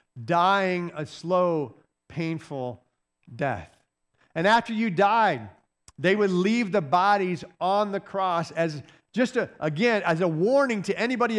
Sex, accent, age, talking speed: male, American, 40-59, 130 wpm